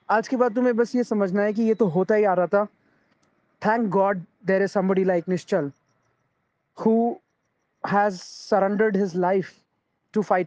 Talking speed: 75 wpm